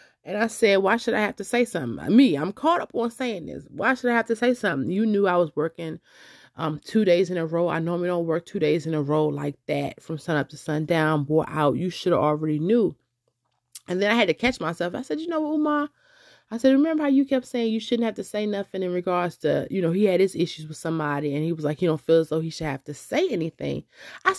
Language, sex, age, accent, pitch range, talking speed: English, female, 30-49, American, 155-220 Hz, 270 wpm